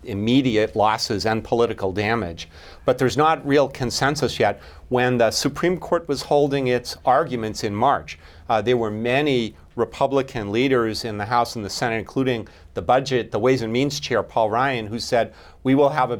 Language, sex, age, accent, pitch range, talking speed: English, male, 40-59, American, 105-135 Hz, 180 wpm